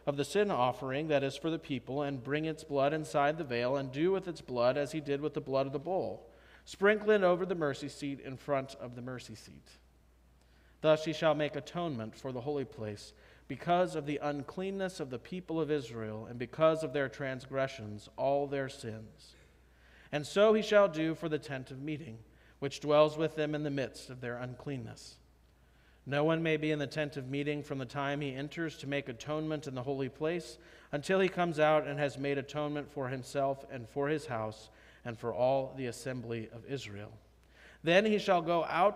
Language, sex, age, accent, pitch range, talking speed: English, male, 40-59, American, 120-155 Hz, 205 wpm